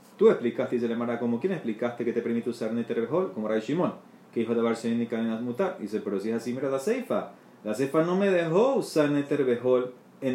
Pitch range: 115-150 Hz